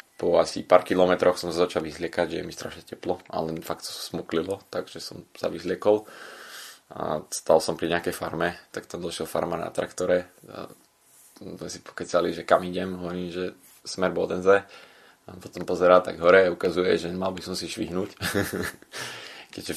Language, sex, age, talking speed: Slovak, male, 20-39, 175 wpm